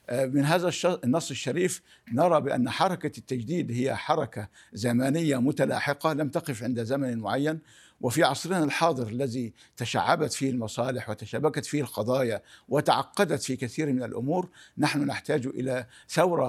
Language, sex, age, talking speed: Arabic, male, 60-79, 130 wpm